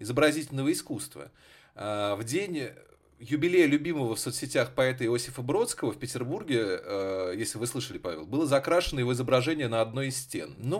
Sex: male